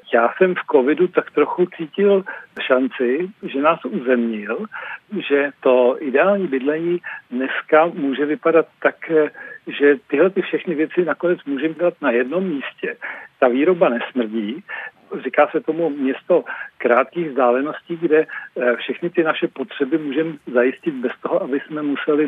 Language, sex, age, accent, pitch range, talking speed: Czech, male, 60-79, native, 135-170 Hz, 135 wpm